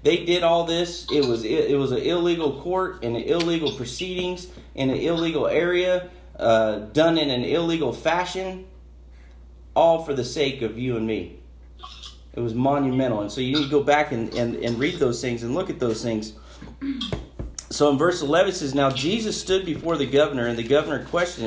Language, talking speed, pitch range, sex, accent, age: English, 195 wpm, 110-160 Hz, male, American, 40-59